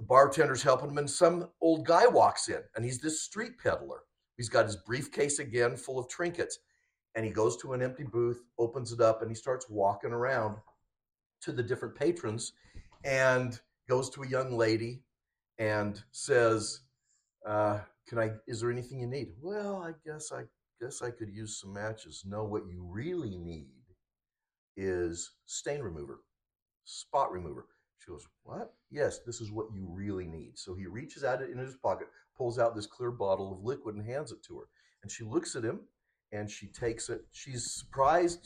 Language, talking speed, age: English, 185 wpm, 50-69